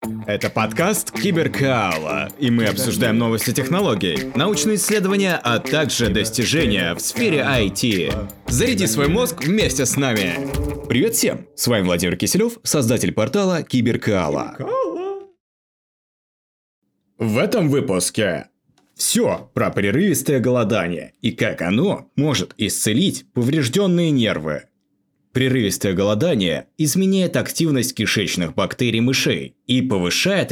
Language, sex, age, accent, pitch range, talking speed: Russian, male, 30-49, native, 105-155 Hz, 105 wpm